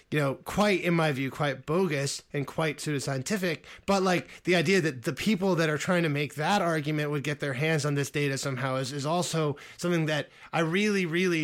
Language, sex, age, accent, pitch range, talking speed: English, male, 20-39, American, 145-185 Hz, 215 wpm